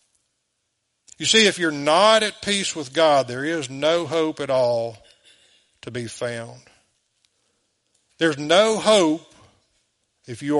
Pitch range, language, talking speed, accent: 125-180 Hz, English, 130 wpm, American